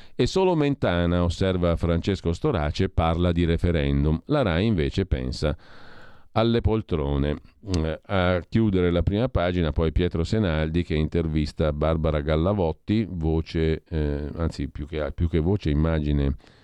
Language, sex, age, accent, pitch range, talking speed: Italian, male, 50-69, native, 75-90 Hz, 130 wpm